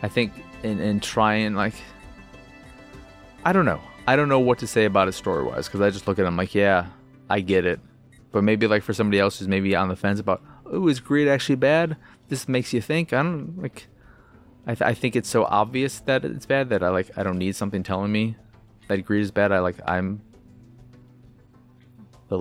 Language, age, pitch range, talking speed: English, 30-49, 90-125 Hz, 215 wpm